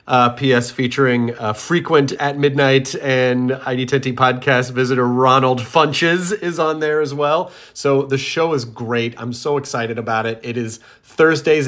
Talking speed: 165 wpm